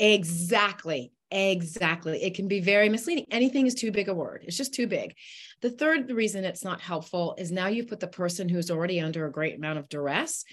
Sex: female